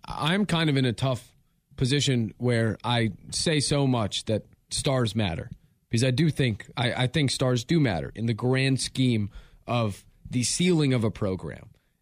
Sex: male